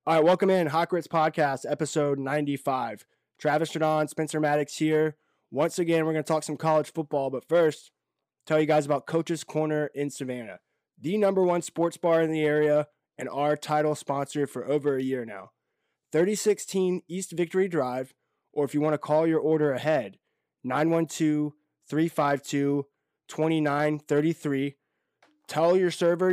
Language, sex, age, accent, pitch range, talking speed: English, male, 20-39, American, 140-165 Hz, 150 wpm